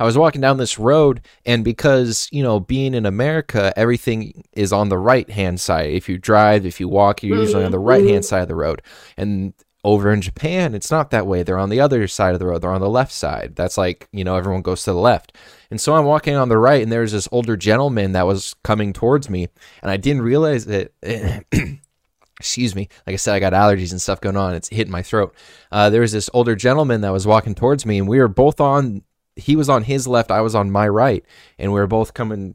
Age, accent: 20-39, American